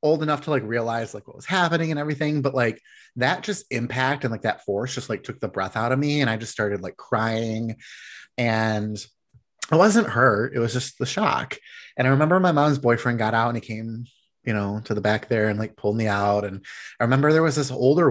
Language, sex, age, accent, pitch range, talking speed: English, male, 30-49, American, 110-145 Hz, 240 wpm